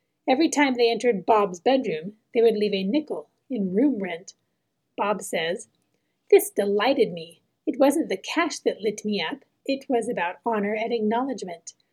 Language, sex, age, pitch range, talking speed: English, female, 30-49, 210-260 Hz, 165 wpm